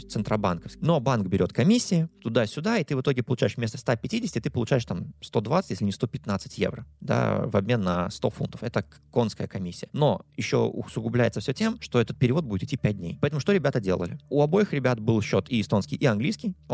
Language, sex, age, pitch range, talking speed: Russian, male, 20-39, 105-140 Hz, 195 wpm